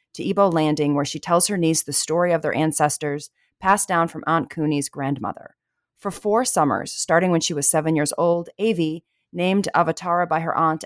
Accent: American